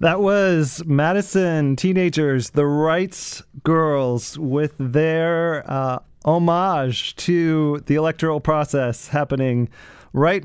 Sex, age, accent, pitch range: male, 30-49, American, 135-170 Hz